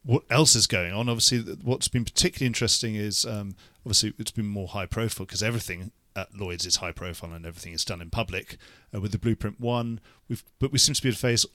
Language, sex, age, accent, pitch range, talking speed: English, male, 40-59, British, 100-120 Hz, 225 wpm